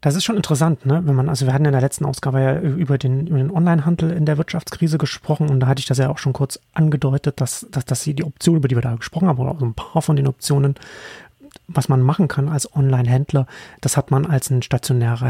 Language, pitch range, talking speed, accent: German, 135-155 Hz, 260 wpm, German